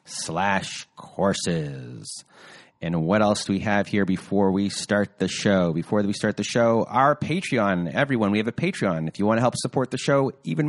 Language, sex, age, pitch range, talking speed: English, male, 30-49, 100-125 Hz, 195 wpm